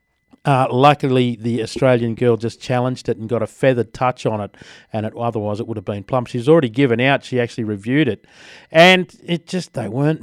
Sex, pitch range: male, 120-150 Hz